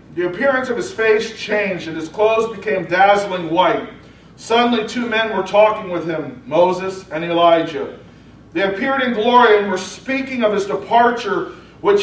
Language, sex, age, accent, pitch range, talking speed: English, male, 40-59, American, 170-215 Hz, 165 wpm